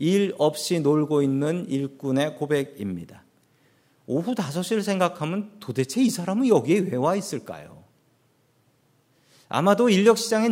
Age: 40-59